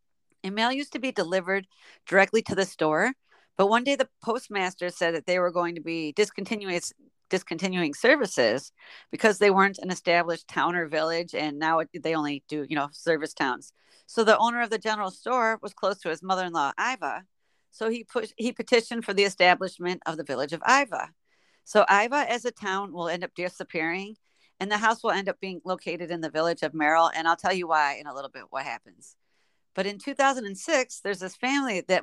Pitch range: 175-225 Hz